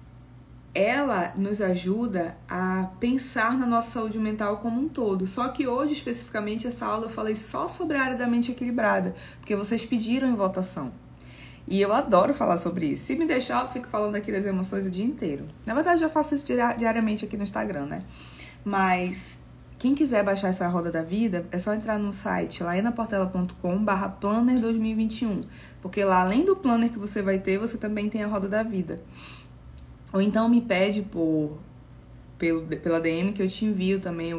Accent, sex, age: Brazilian, female, 20-39